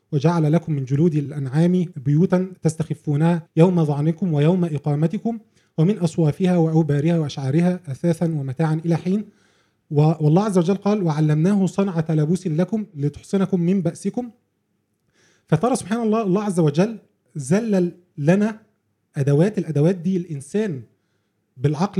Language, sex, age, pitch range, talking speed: Arabic, male, 20-39, 150-185 Hz, 115 wpm